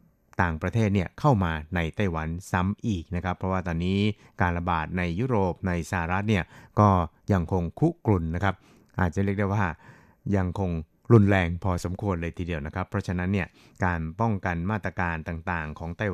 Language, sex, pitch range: Thai, male, 85-105 Hz